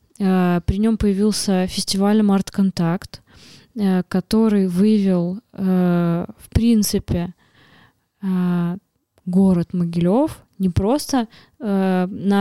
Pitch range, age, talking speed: 180-205 Hz, 20-39, 80 wpm